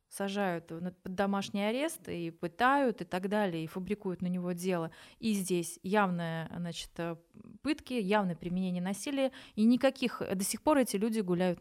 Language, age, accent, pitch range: Russian, 20-39, native, 185-225 Hz